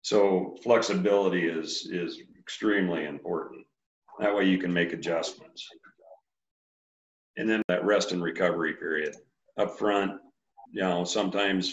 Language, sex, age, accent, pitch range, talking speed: English, male, 50-69, American, 85-100 Hz, 125 wpm